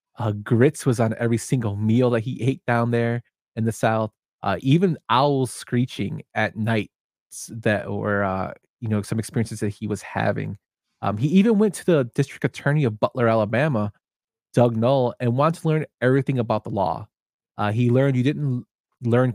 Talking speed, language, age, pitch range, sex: 185 wpm, English, 20-39, 105-135 Hz, male